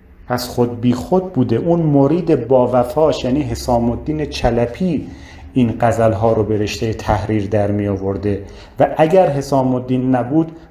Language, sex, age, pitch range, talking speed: Persian, male, 40-59, 105-140 Hz, 150 wpm